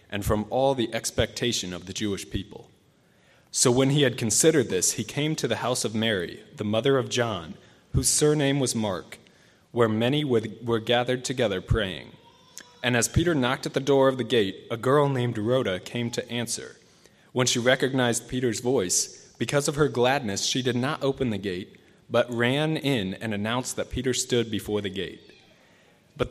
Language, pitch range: English, 110-135 Hz